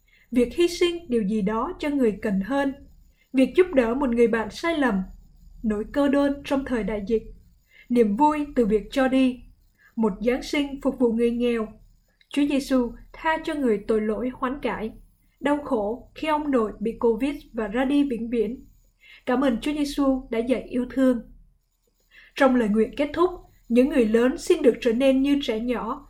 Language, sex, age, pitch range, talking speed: Vietnamese, female, 20-39, 235-280 Hz, 190 wpm